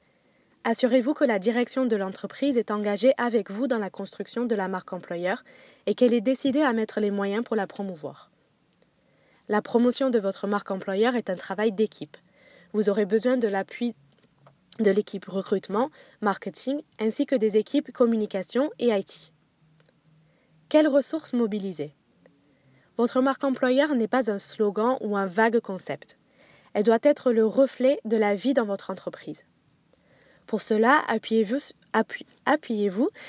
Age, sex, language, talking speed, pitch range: 20-39, female, English, 150 wpm, 195-255 Hz